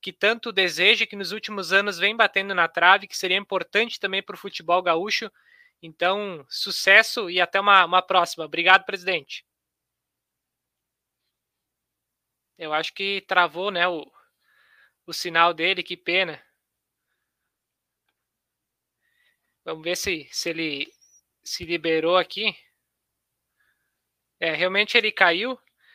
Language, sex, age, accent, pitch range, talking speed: Portuguese, male, 20-39, Brazilian, 180-215 Hz, 115 wpm